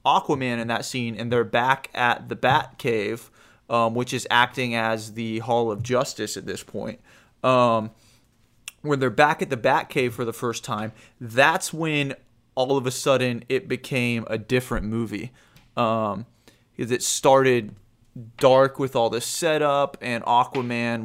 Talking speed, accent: 165 wpm, American